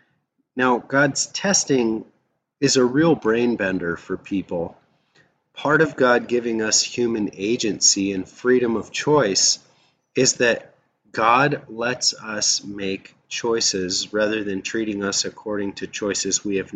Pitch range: 100-135 Hz